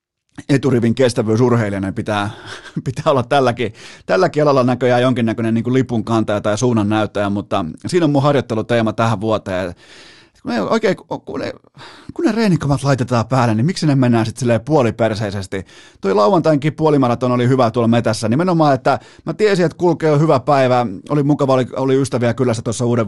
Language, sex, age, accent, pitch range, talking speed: Finnish, male, 30-49, native, 115-145 Hz, 160 wpm